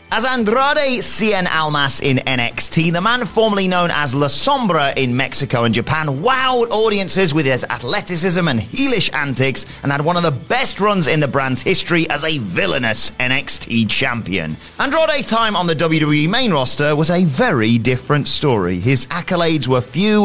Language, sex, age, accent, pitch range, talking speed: English, male, 30-49, British, 125-190 Hz, 170 wpm